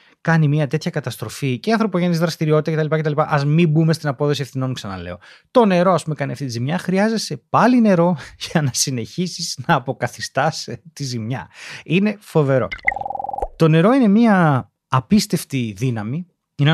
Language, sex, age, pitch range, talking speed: Greek, male, 30-49, 135-190 Hz, 150 wpm